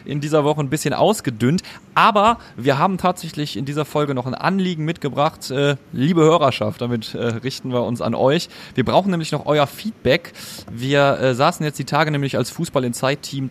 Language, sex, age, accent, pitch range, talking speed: German, male, 30-49, German, 125-155 Hz, 175 wpm